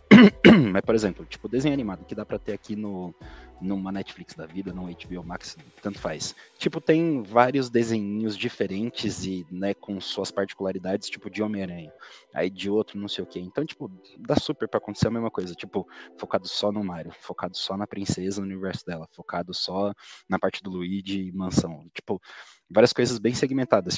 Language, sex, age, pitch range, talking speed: Portuguese, male, 20-39, 95-115 Hz, 185 wpm